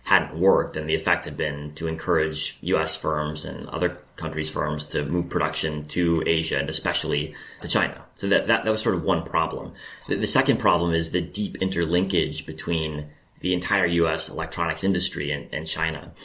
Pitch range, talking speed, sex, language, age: 80-95 Hz, 185 wpm, male, English, 30-49